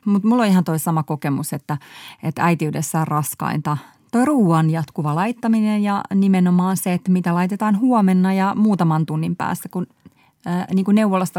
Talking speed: 165 wpm